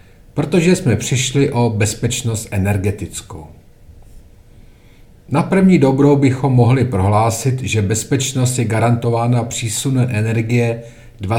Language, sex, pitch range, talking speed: Czech, male, 110-130 Hz, 95 wpm